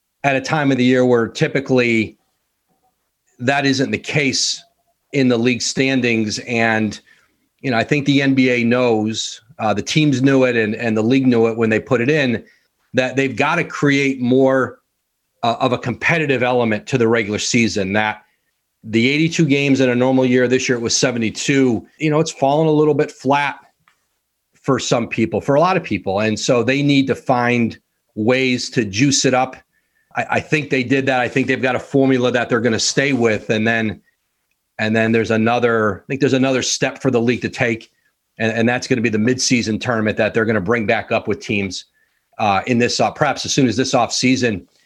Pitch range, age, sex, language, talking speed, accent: 115-135 Hz, 40-59, male, English, 210 wpm, American